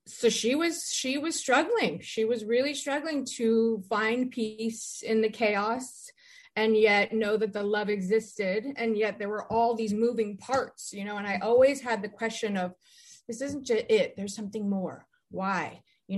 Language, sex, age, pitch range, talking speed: English, female, 30-49, 185-255 Hz, 180 wpm